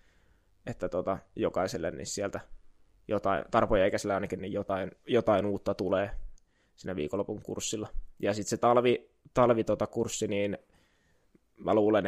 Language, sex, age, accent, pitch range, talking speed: Finnish, male, 20-39, native, 95-115 Hz, 140 wpm